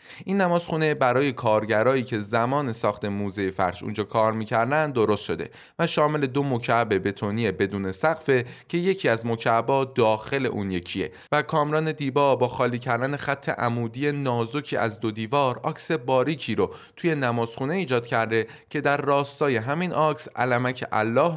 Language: Persian